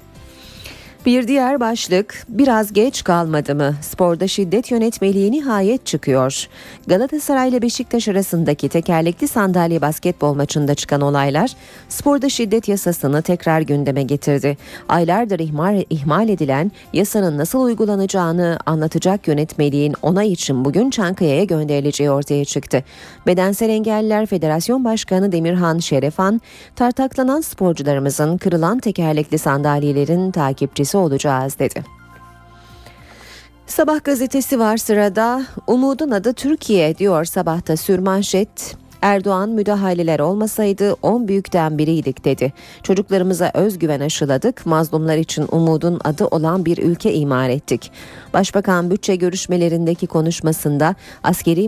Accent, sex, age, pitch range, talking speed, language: native, female, 40-59, 150-205 Hz, 105 wpm, Turkish